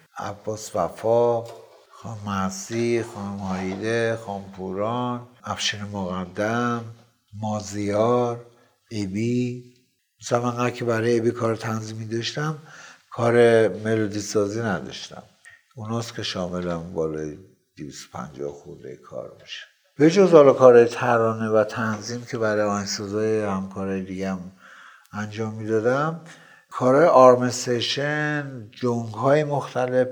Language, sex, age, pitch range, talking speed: Persian, male, 60-79, 100-120 Hz, 95 wpm